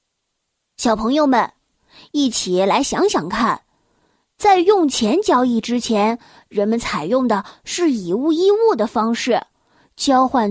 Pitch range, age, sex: 215-310 Hz, 20-39, female